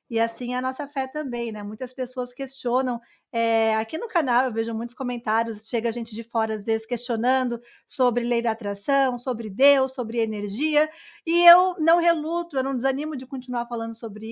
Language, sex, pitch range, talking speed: Portuguese, female, 240-295 Hz, 185 wpm